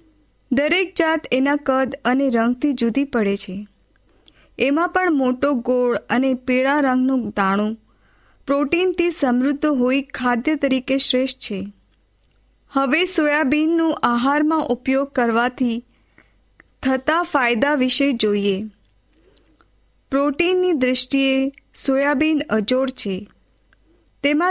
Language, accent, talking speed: Hindi, native, 90 wpm